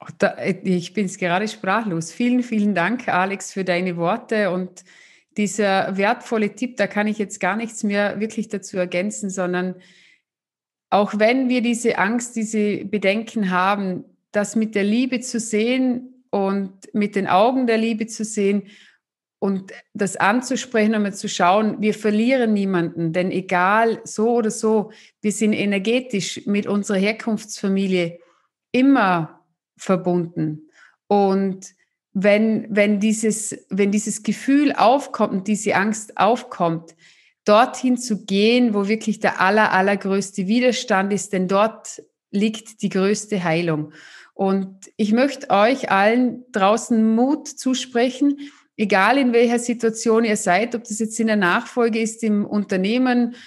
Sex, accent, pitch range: female, German, 195-230 Hz